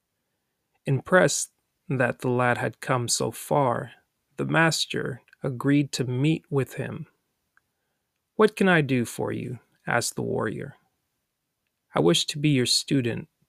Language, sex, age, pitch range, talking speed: English, male, 30-49, 120-155 Hz, 135 wpm